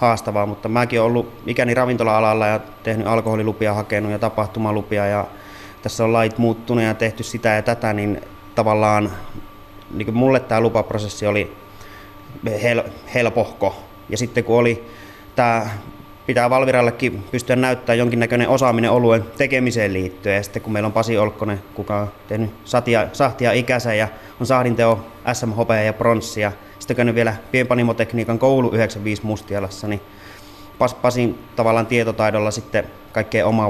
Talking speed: 140 wpm